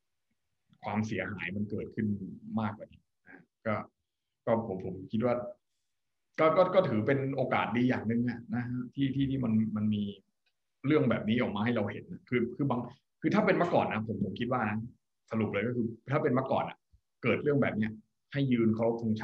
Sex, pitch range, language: male, 105-125 Hz, Thai